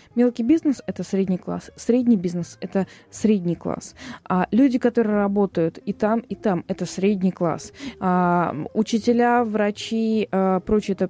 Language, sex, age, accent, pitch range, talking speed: Russian, female, 20-39, native, 195-250 Hz, 135 wpm